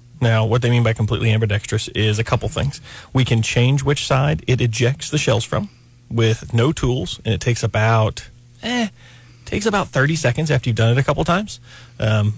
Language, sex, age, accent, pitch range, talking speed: English, male, 30-49, American, 110-125 Hz, 200 wpm